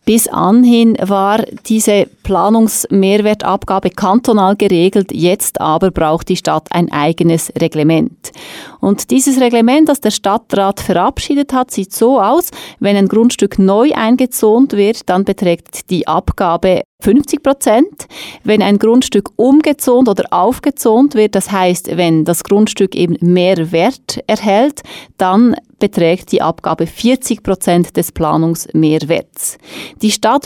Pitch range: 180-230 Hz